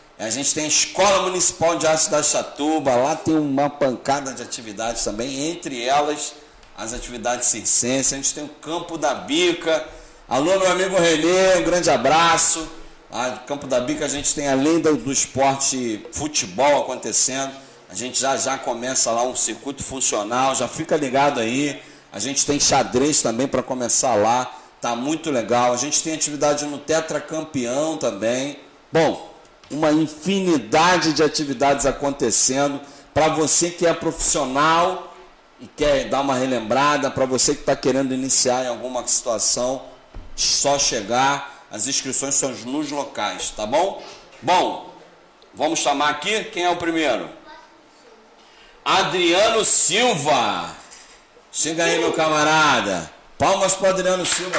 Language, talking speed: Portuguese, 145 wpm